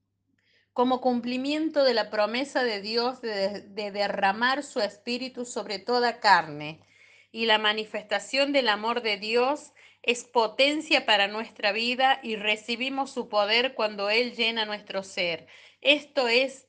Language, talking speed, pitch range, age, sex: Spanish, 135 wpm, 205-265 Hz, 30-49, female